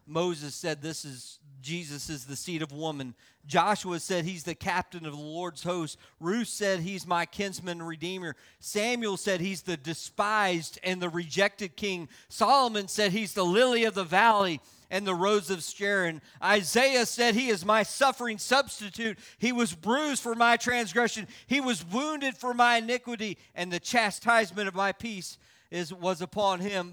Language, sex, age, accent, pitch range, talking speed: English, male, 40-59, American, 175-235 Hz, 170 wpm